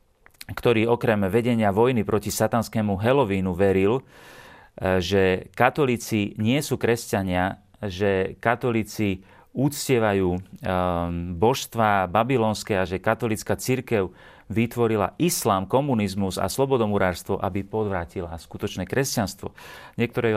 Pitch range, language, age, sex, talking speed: 95-110 Hz, Slovak, 40-59, male, 95 wpm